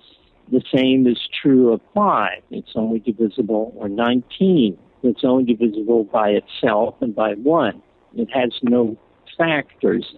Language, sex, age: English, male, 60-79